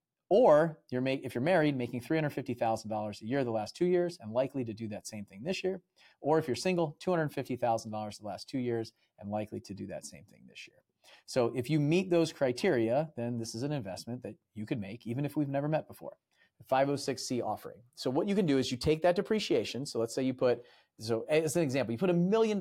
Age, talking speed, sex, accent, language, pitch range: 30-49, 230 wpm, male, American, English, 115-160 Hz